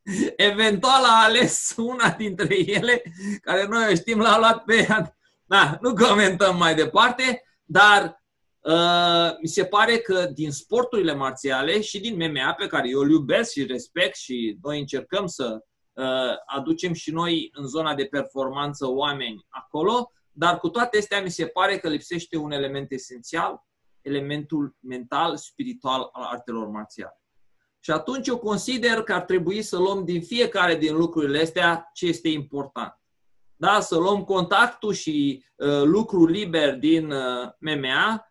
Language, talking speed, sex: Romanian, 150 wpm, male